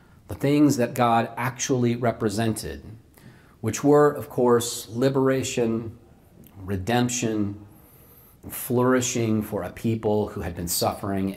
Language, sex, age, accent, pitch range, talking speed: English, male, 40-59, American, 115-165 Hz, 105 wpm